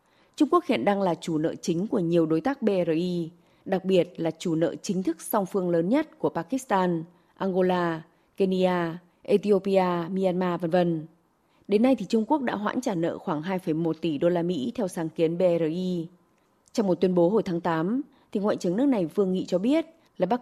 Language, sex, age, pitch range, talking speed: Vietnamese, female, 20-39, 170-220 Hz, 205 wpm